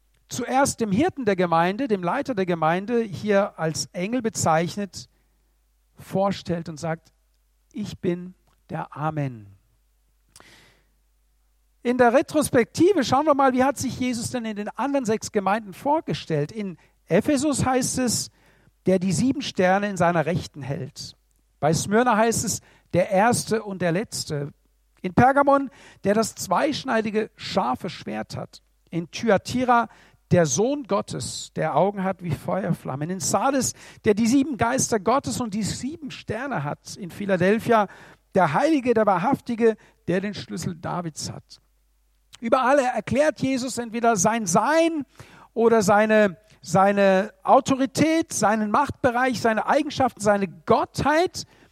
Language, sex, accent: German, male, German